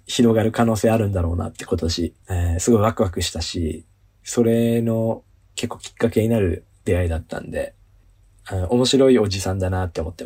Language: Japanese